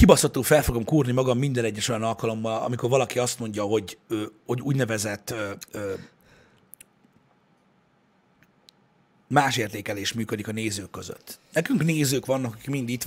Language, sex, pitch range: Hungarian, male, 115-145 Hz